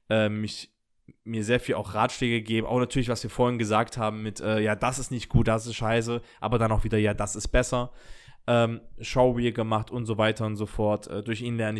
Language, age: German, 20-39